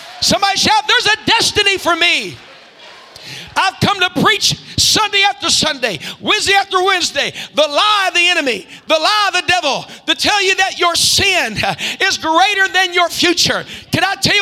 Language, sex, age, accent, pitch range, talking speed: English, male, 50-69, American, 340-400 Hz, 170 wpm